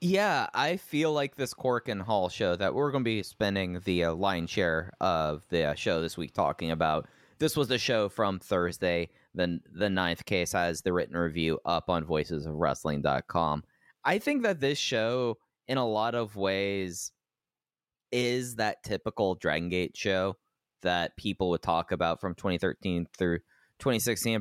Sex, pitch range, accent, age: male, 85-120 Hz, American, 20-39